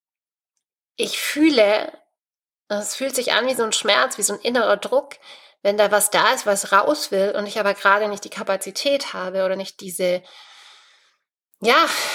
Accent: German